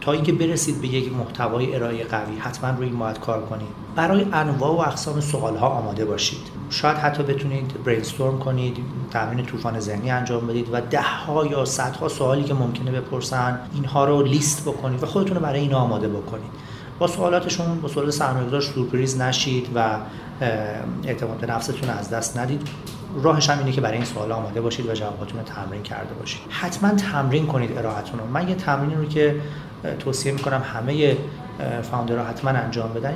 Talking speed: 175 wpm